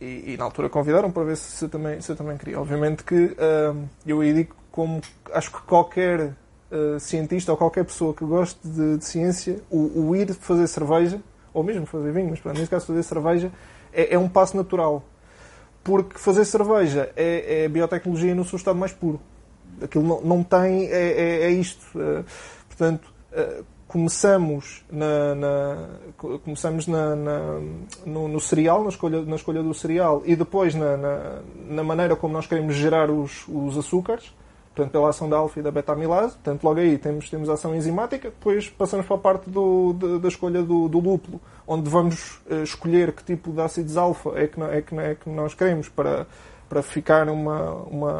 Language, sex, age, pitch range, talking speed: Portuguese, male, 20-39, 150-180 Hz, 190 wpm